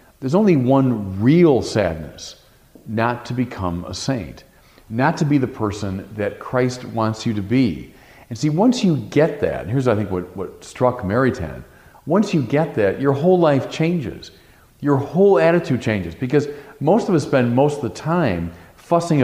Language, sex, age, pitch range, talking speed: English, male, 40-59, 105-155 Hz, 180 wpm